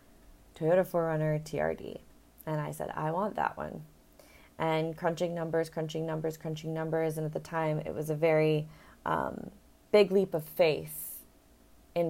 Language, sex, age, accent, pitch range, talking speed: English, female, 20-39, American, 150-180 Hz, 155 wpm